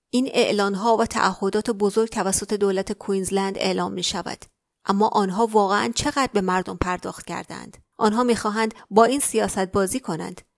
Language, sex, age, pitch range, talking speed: Persian, female, 30-49, 195-235 Hz, 160 wpm